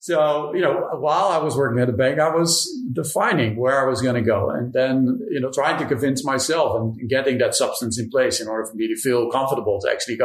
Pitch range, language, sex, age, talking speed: 120-155 Hz, English, male, 40-59, 245 wpm